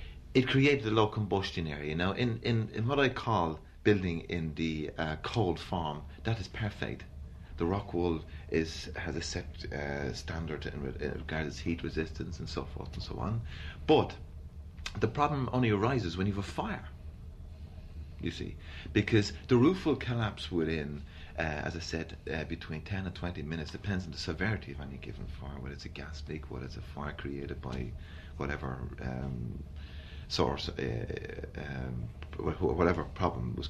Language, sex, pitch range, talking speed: English, male, 75-100 Hz, 175 wpm